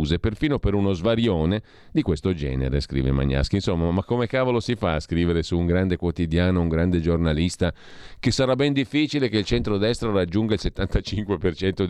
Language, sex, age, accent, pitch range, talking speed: Italian, male, 40-59, native, 80-110 Hz, 170 wpm